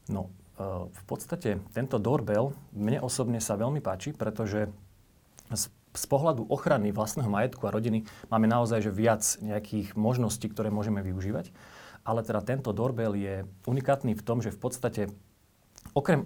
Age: 40-59